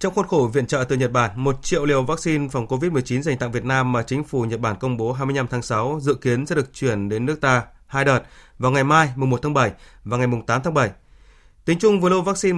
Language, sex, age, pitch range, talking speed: Vietnamese, male, 20-39, 115-145 Hz, 265 wpm